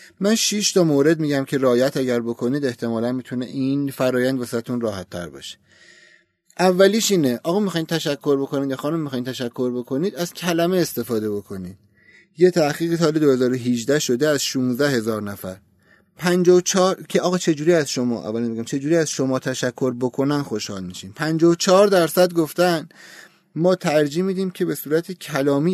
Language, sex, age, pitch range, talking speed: Persian, male, 30-49, 120-165 Hz, 155 wpm